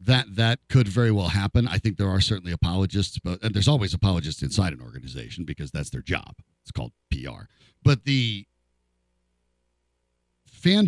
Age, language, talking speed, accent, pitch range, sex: 50-69, English, 165 wpm, American, 80-125 Hz, male